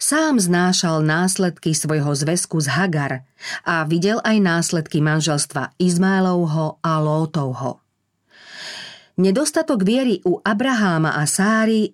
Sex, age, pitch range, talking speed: female, 40-59, 155-195 Hz, 105 wpm